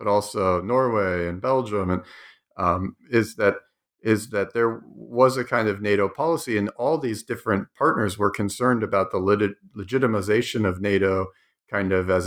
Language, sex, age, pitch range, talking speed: English, male, 40-59, 95-120 Hz, 165 wpm